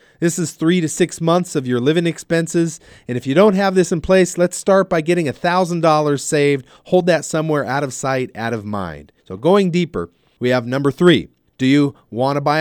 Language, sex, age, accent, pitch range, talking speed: English, male, 40-59, American, 120-160 Hz, 210 wpm